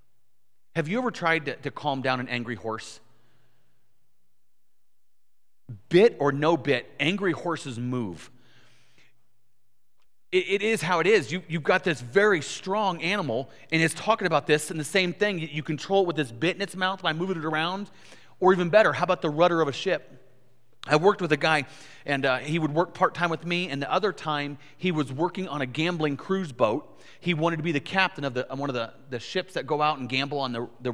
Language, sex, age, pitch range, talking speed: English, male, 30-49, 135-185 Hz, 215 wpm